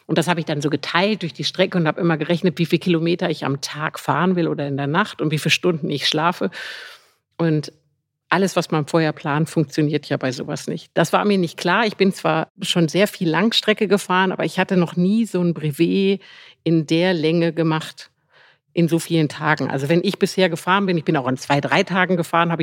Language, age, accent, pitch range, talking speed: German, 50-69, German, 155-185 Hz, 230 wpm